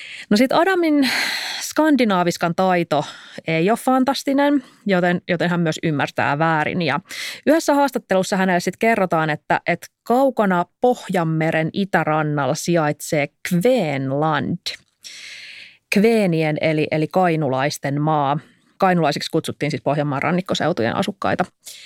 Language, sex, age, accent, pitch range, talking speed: Finnish, female, 30-49, native, 165-235 Hz, 105 wpm